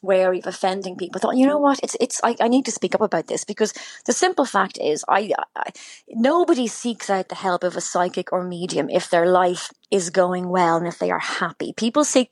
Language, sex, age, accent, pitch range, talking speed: English, female, 30-49, British, 180-245 Hz, 240 wpm